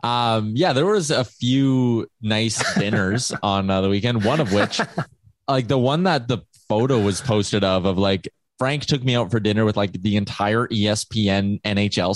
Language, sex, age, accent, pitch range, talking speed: English, male, 20-39, American, 105-135 Hz, 190 wpm